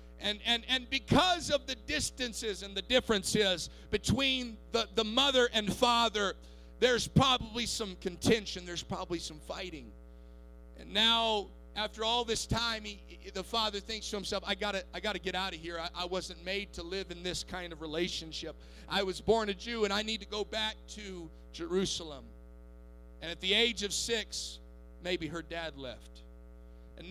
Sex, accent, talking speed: male, American, 175 wpm